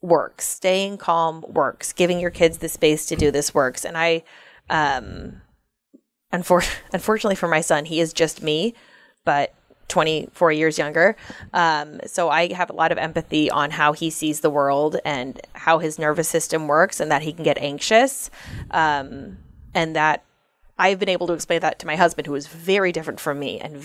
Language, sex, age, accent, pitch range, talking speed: English, female, 20-39, American, 155-185 Hz, 190 wpm